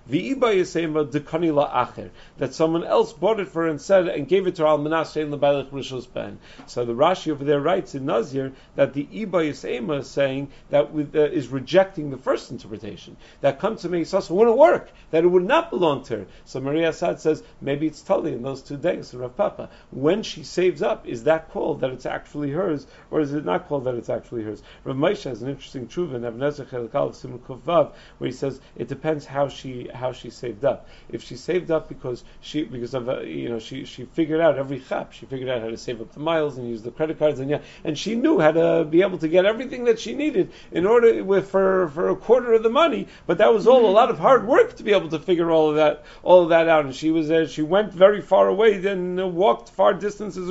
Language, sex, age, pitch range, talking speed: English, male, 50-69, 135-185 Hz, 235 wpm